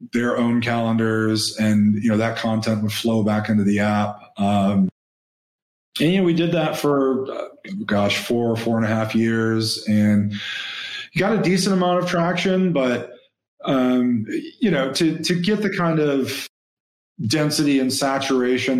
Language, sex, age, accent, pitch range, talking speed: English, male, 30-49, American, 110-130 Hz, 160 wpm